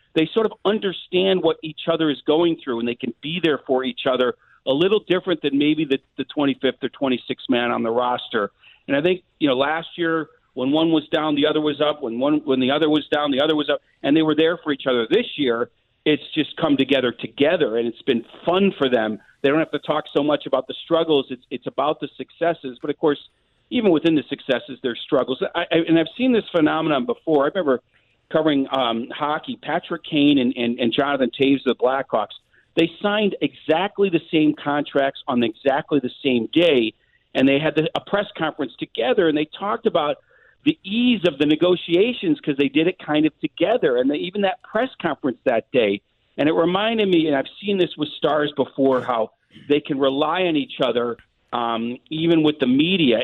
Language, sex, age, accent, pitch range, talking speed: English, male, 50-69, American, 130-165 Hz, 215 wpm